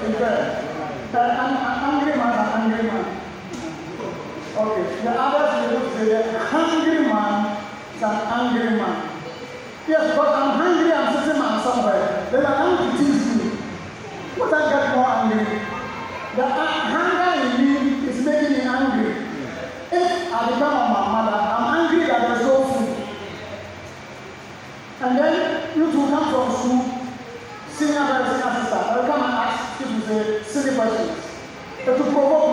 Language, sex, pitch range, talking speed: English, male, 220-285 Hz, 135 wpm